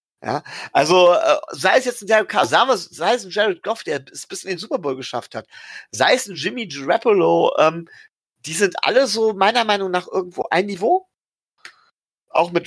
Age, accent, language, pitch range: 40-59, German, German, 140-210 Hz